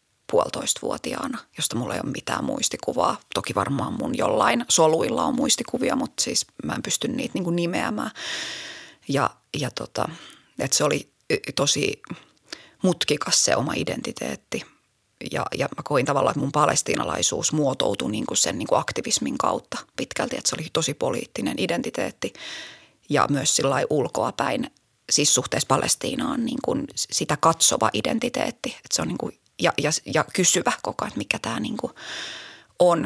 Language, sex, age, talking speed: Finnish, female, 30-49, 150 wpm